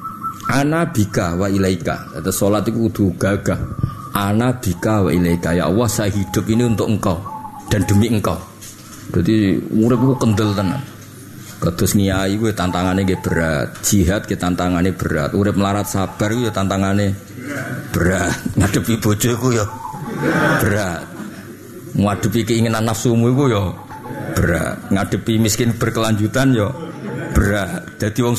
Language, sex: Indonesian, male